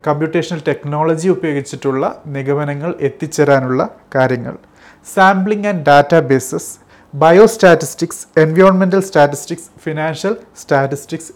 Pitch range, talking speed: 140-180 Hz, 85 wpm